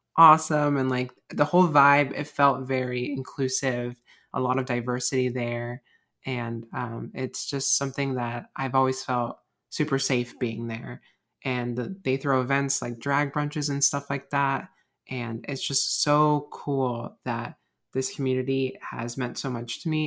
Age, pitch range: 20-39, 120-140 Hz